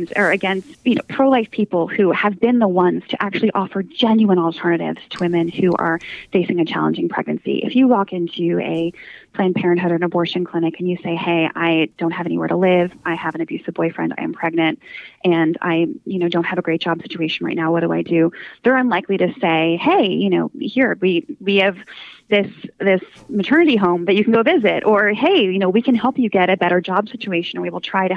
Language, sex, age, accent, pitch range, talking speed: English, female, 20-39, American, 175-230 Hz, 230 wpm